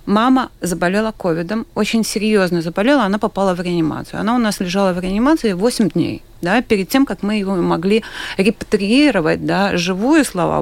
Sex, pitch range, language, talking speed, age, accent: female, 190-245 Hz, Russian, 165 wpm, 30-49, native